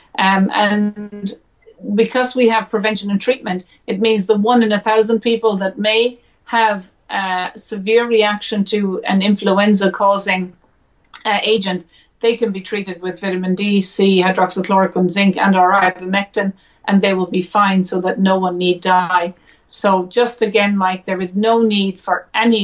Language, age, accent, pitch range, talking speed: English, 50-69, Swedish, 185-215 Hz, 165 wpm